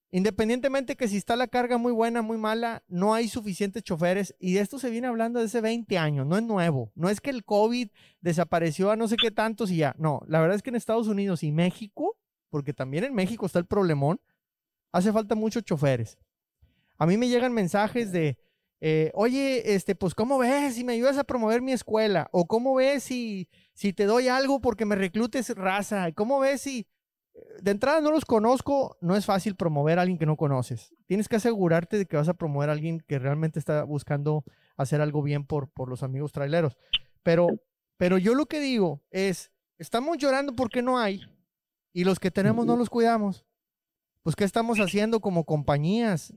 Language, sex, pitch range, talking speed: Spanish, male, 170-235 Hz, 200 wpm